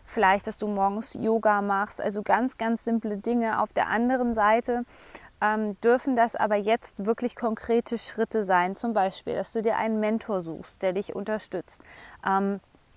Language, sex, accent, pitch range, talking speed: German, female, German, 205-235 Hz, 165 wpm